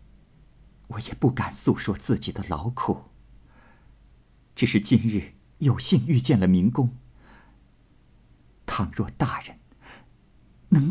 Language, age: Chinese, 50-69